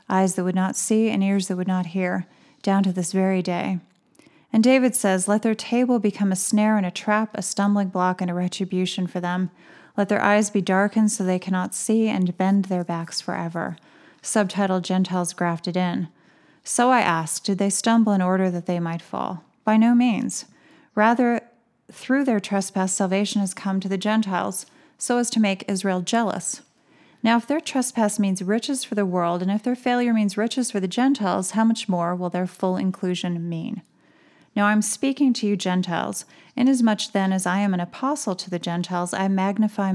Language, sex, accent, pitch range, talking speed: English, female, American, 185-220 Hz, 195 wpm